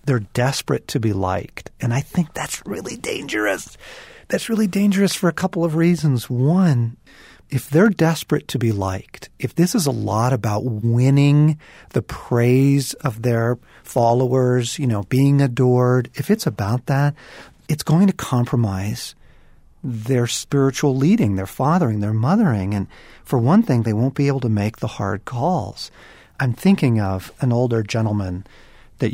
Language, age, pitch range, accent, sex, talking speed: English, 40-59, 120-170 Hz, American, male, 160 wpm